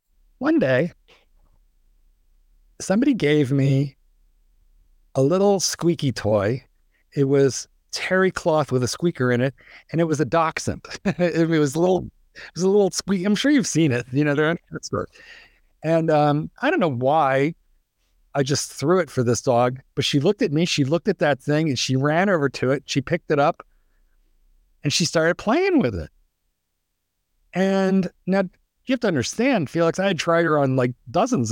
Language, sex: English, male